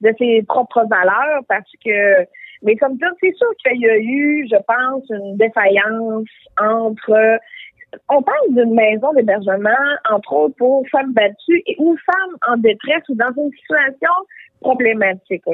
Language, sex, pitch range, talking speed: French, female, 225-320 Hz, 150 wpm